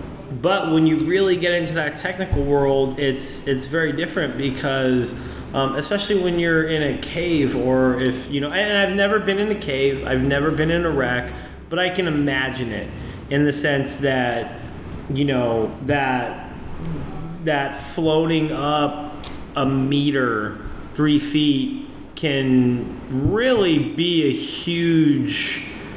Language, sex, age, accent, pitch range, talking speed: English, male, 30-49, American, 135-165 Hz, 145 wpm